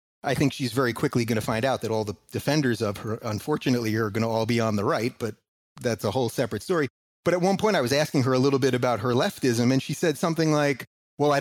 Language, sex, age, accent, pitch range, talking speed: English, male, 30-49, American, 110-145 Hz, 270 wpm